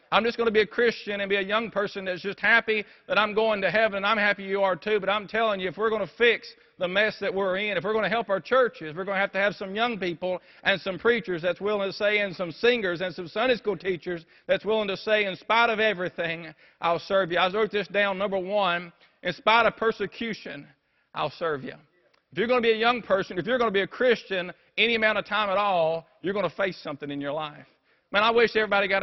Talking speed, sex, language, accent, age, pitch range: 270 wpm, male, English, American, 50-69, 180-220 Hz